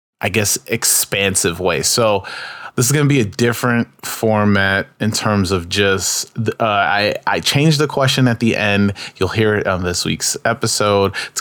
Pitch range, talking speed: 95-115 Hz, 180 wpm